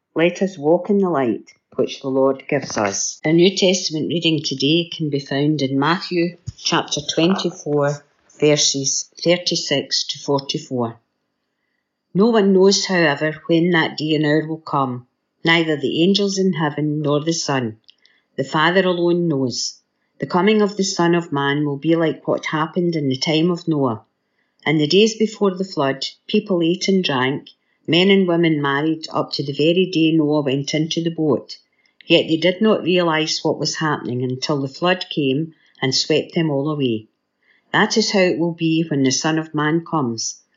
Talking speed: 175 wpm